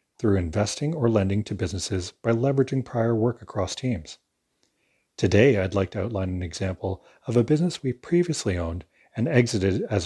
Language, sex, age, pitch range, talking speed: English, male, 40-59, 95-120 Hz, 165 wpm